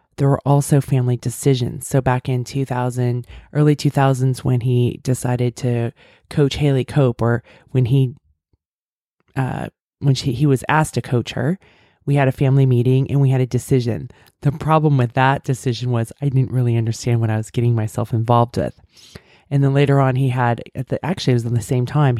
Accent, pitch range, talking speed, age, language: American, 120-140 Hz, 195 wpm, 20-39, English